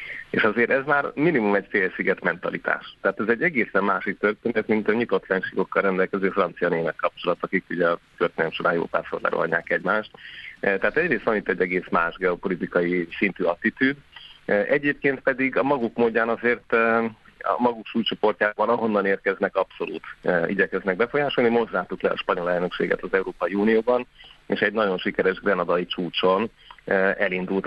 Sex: male